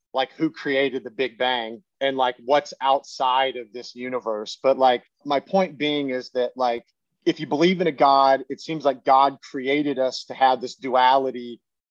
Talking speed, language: 185 wpm, English